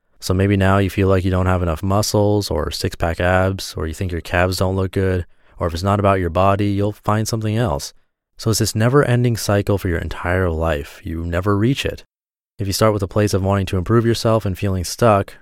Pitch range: 90-110 Hz